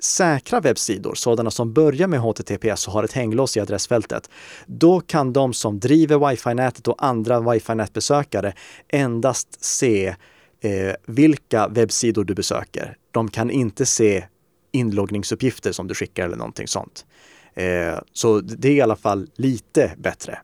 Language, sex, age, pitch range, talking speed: Swedish, male, 30-49, 110-145 Hz, 140 wpm